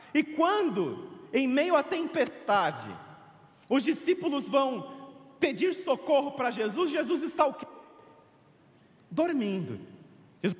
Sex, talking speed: male, 110 wpm